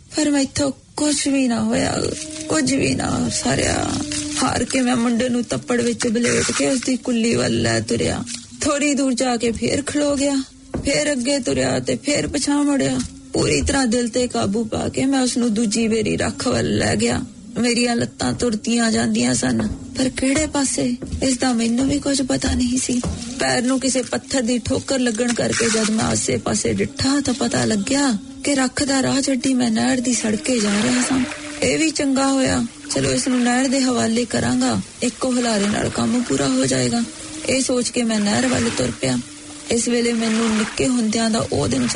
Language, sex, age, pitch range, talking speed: English, female, 30-49, 225-270 Hz, 95 wpm